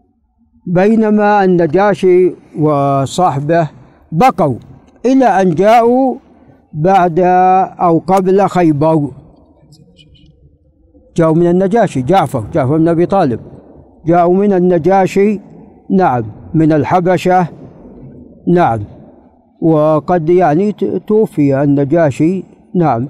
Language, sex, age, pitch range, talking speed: Arabic, male, 60-79, 160-190 Hz, 80 wpm